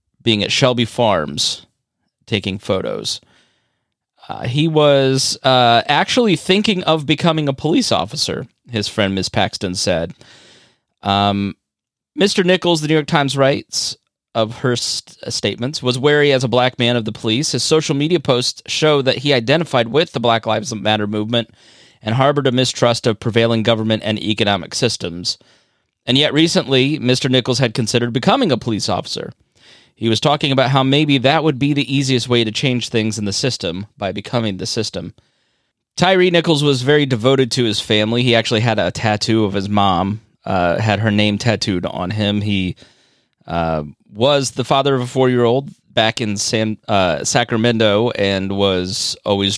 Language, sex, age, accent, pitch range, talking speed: English, male, 30-49, American, 105-135 Hz, 165 wpm